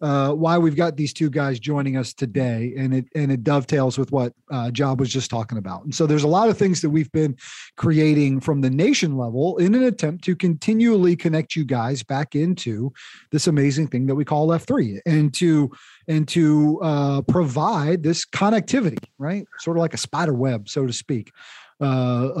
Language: English